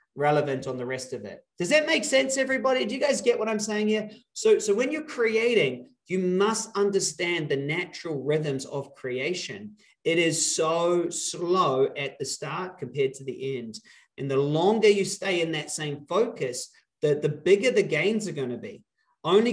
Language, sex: English, male